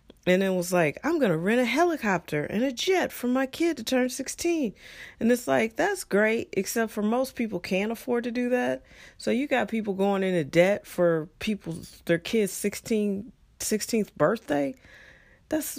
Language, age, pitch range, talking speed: English, 40-59, 140-215 Hz, 185 wpm